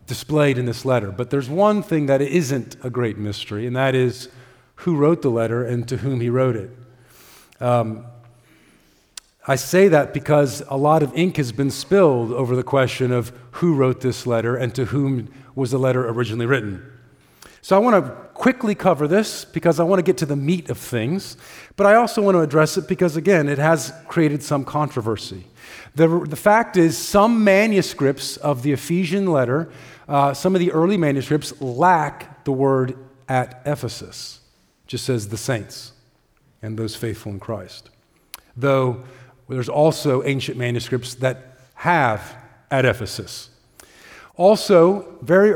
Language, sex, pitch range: English, male, 125-165 Hz